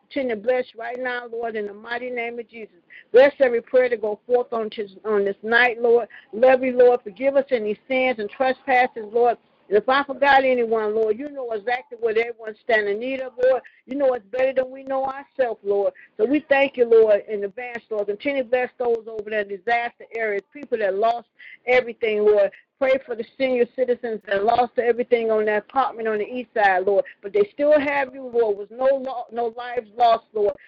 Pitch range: 220-265 Hz